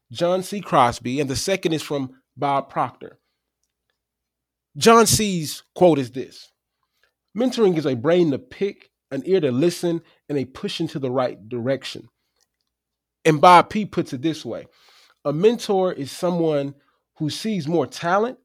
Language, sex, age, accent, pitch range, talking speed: English, male, 30-49, American, 130-180 Hz, 155 wpm